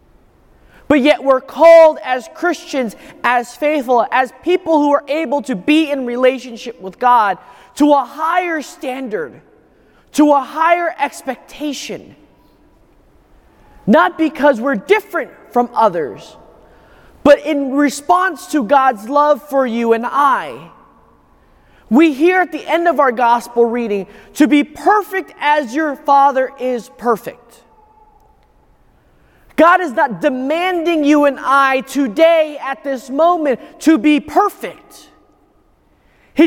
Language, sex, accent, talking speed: English, male, American, 125 wpm